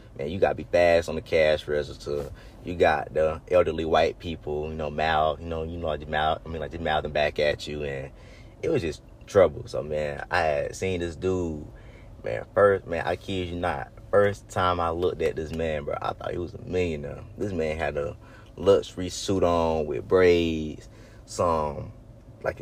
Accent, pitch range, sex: American, 80-110 Hz, male